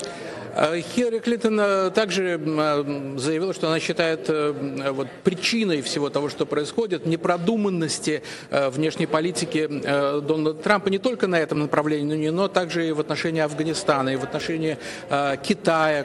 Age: 50-69